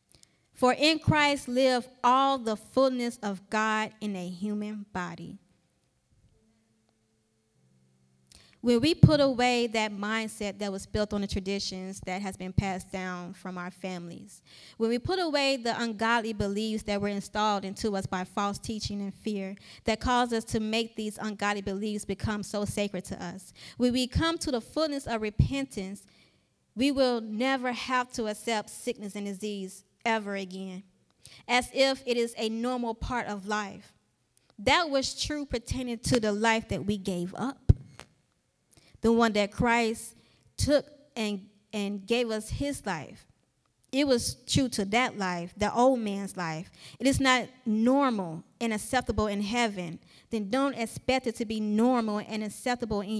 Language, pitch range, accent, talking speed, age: English, 195-245 Hz, American, 160 wpm, 20-39